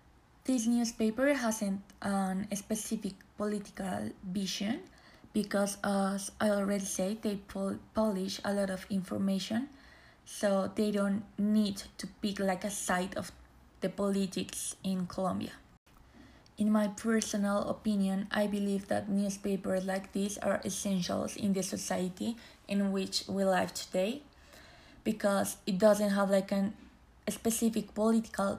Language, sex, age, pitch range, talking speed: English, female, 20-39, 195-215 Hz, 135 wpm